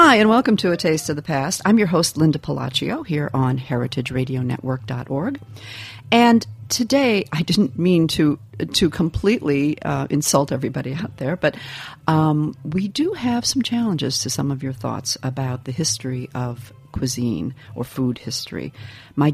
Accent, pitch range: American, 130-160 Hz